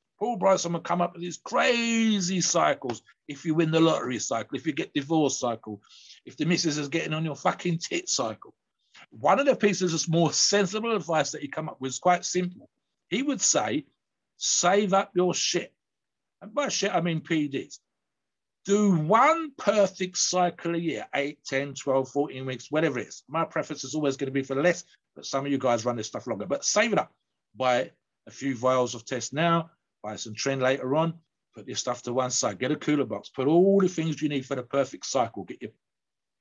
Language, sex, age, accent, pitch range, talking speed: English, male, 60-79, British, 135-180 Hz, 215 wpm